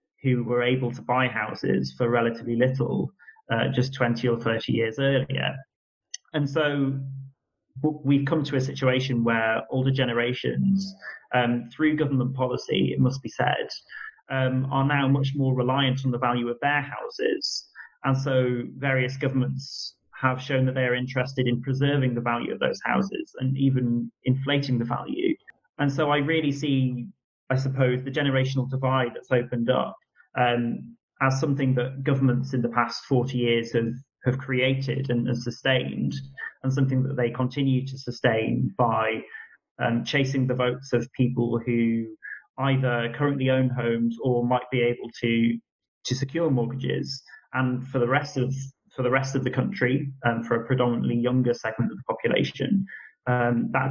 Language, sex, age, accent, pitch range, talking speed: English, male, 30-49, British, 120-135 Hz, 160 wpm